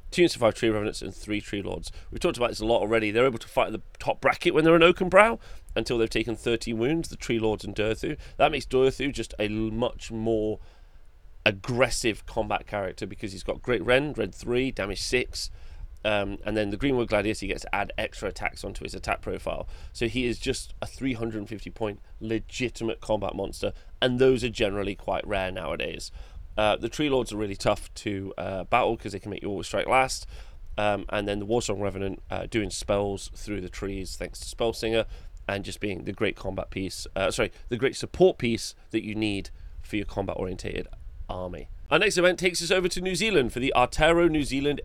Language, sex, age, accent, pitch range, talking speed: English, male, 30-49, British, 95-130 Hz, 215 wpm